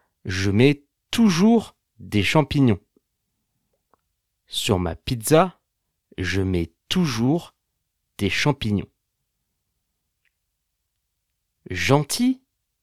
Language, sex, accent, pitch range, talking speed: French, male, French, 100-145 Hz, 65 wpm